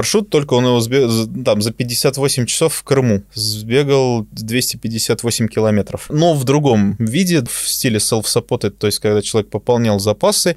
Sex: male